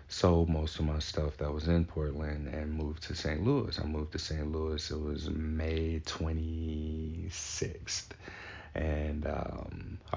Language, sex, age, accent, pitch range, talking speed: English, male, 30-49, American, 75-95 Hz, 150 wpm